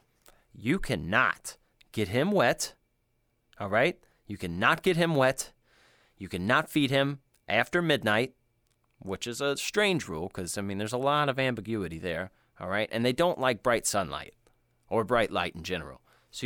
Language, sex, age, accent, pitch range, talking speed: English, male, 30-49, American, 100-140 Hz, 170 wpm